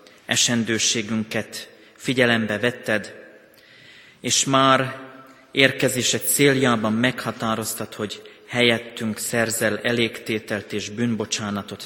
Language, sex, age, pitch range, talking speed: Hungarian, male, 30-49, 105-120 Hz, 70 wpm